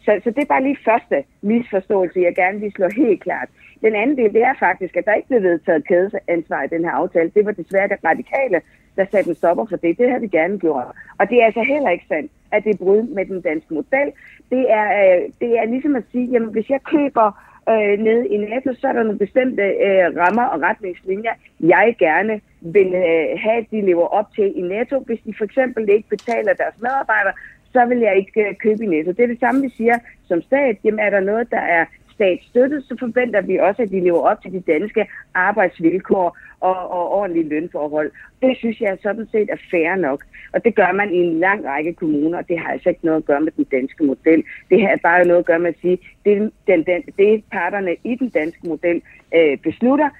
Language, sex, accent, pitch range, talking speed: Danish, female, native, 175-235 Hz, 220 wpm